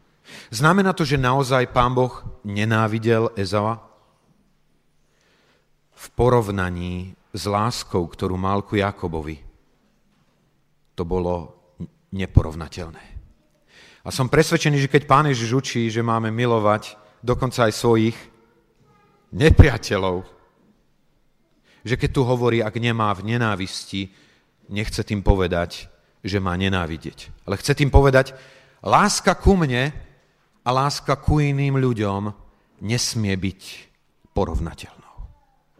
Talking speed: 105 wpm